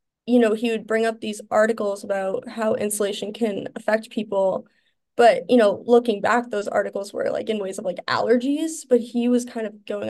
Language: English